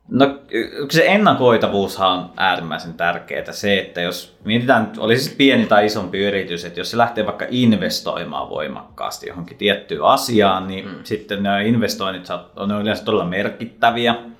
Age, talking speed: 20-39, 145 wpm